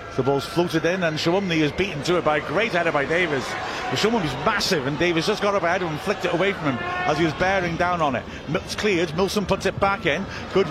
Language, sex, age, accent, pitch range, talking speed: English, male, 50-69, British, 135-170 Hz, 275 wpm